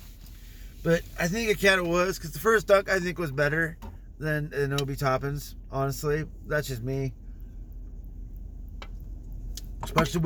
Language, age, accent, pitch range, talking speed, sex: English, 30-49, American, 95-145 Hz, 140 wpm, male